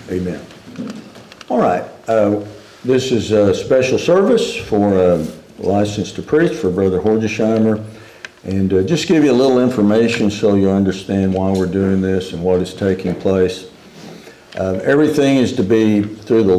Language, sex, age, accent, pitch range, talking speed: English, male, 60-79, American, 95-115 Hz, 160 wpm